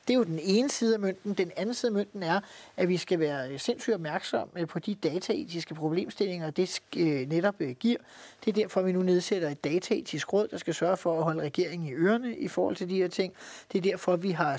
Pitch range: 170-205 Hz